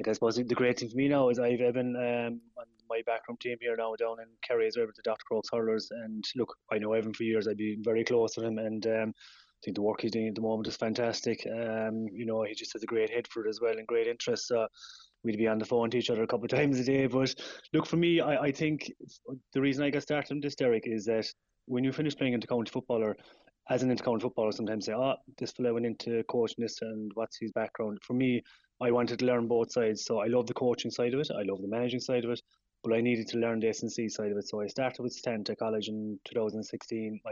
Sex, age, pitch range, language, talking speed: male, 20-39, 110-125 Hz, English, 270 wpm